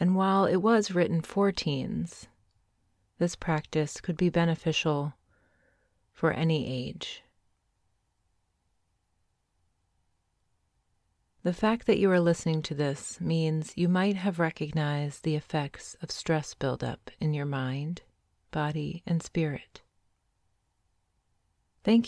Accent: American